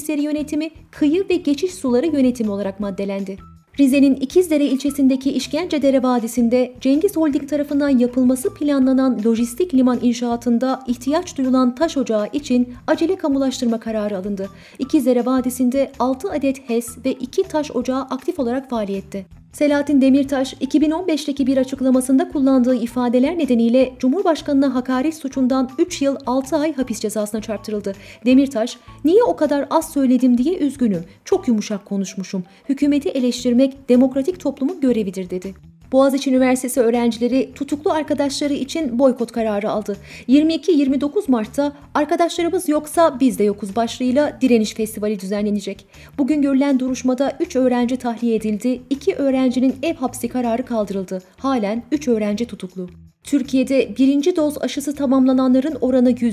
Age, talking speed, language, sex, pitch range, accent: 30-49, 130 wpm, Turkish, female, 235-285 Hz, native